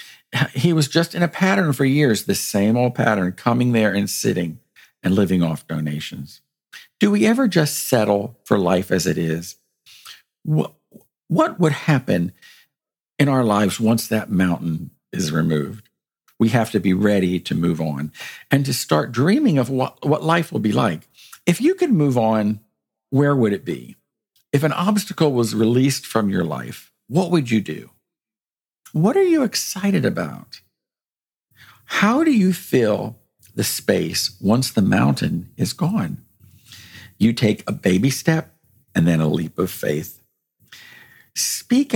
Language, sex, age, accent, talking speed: English, male, 50-69, American, 155 wpm